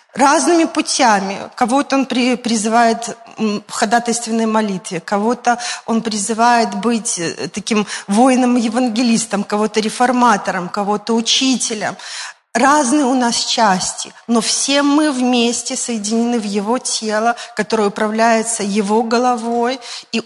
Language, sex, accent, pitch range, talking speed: Russian, female, native, 215-250 Hz, 105 wpm